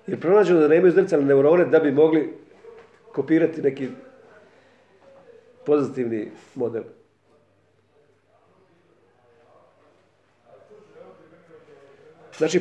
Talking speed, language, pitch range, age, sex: 65 wpm, Croatian, 160-240 Hz, 50-69, male